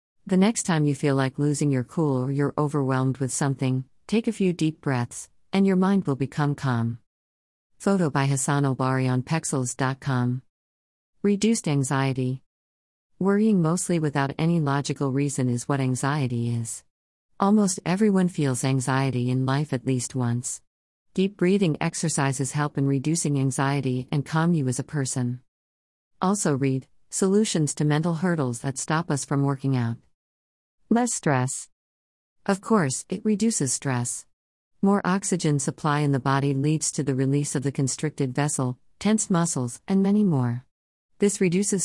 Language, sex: English, female